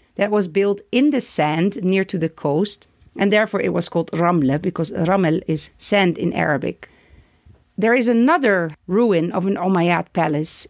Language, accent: English, Dutch